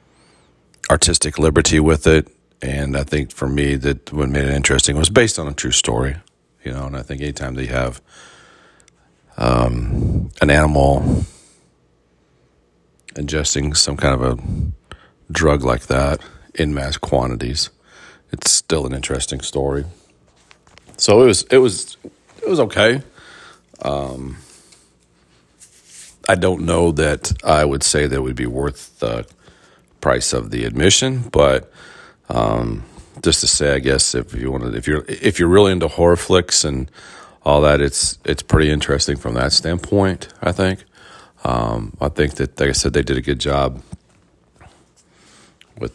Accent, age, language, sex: American, 40-59, English, male